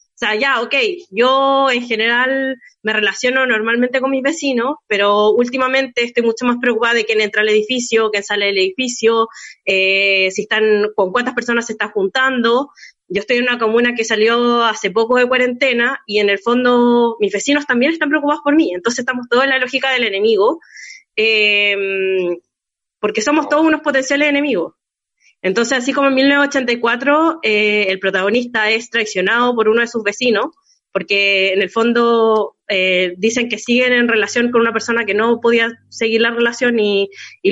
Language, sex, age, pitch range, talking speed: Spanish, female, 20-39, 210-265 Hz, 175 wpm